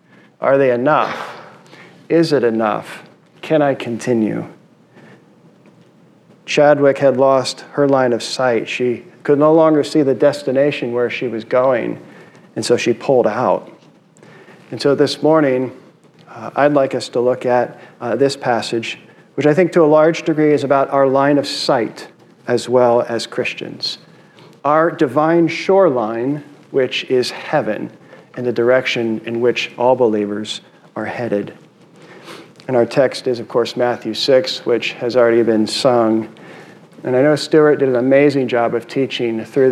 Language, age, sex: English, 40-59, male